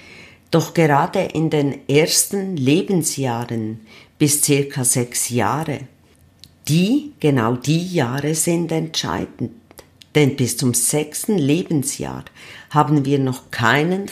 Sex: female